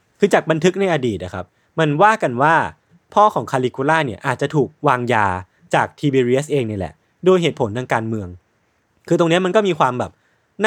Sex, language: male, Thai